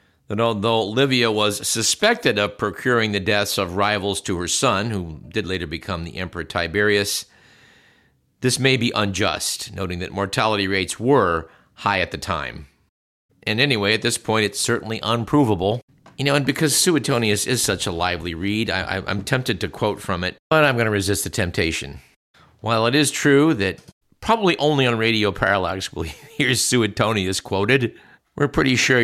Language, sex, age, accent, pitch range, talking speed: English, male, 50-69, American, 90-120 Hz, 170 wpm